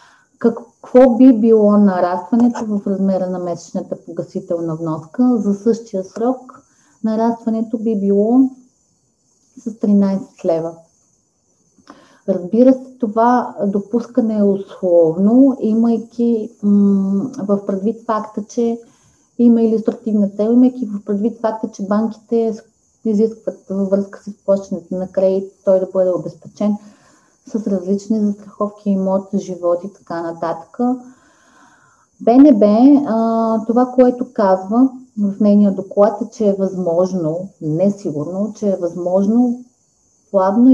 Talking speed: 105 wpm